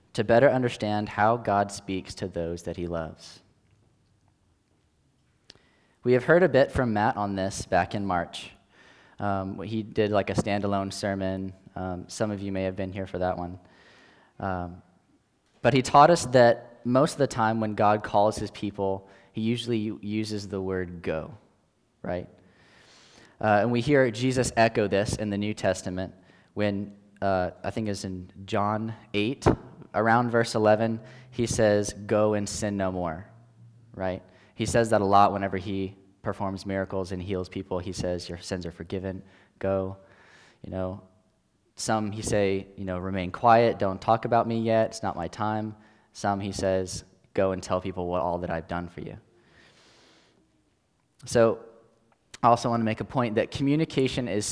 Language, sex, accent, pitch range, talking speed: English, male, American, 95-115 Hz, 170 wpm